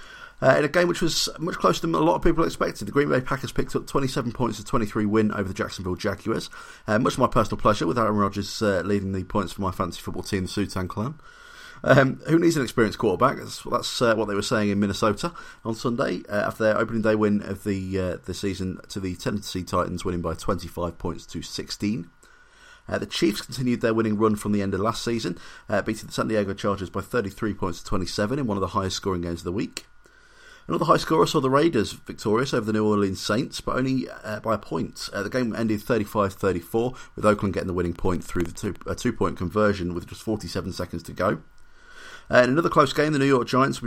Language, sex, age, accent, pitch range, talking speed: English, male, 30-49, British, 95-120 Hz, 240 wpm